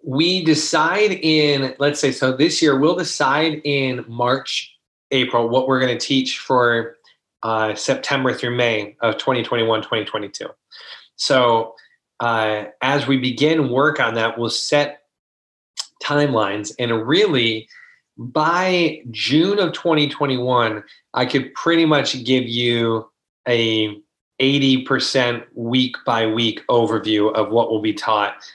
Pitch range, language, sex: 115-145 Hz, English, male